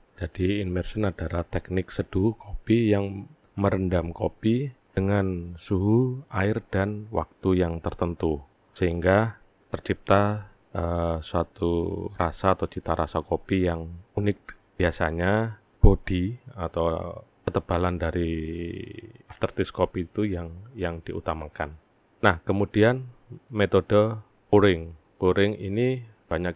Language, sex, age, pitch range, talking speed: Indonesian, male, 30-49, 85-105 Hz, 100 wpm